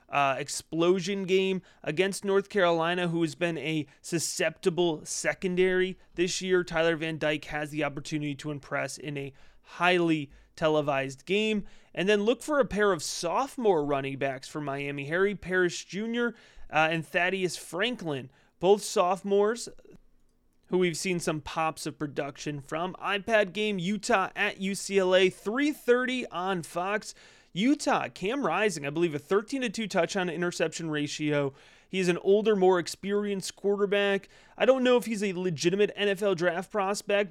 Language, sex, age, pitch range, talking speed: English, male, 30-49, 155-200 Hz, 150 wpm